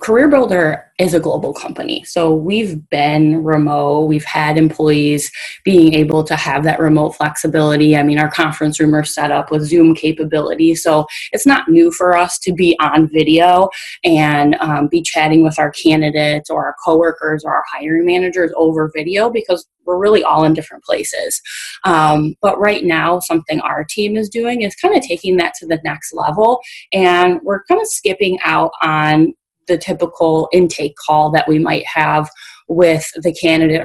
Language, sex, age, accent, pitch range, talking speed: English, female, 20-39, American, 155-190 Hz, 175 wpm